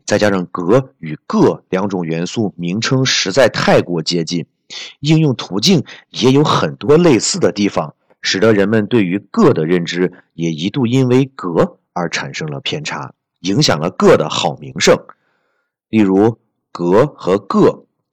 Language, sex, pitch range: Chinese, male, 90-135 Hz